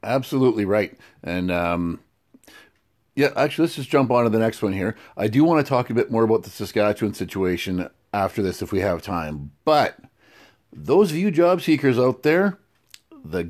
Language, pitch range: English, 105-150 Hz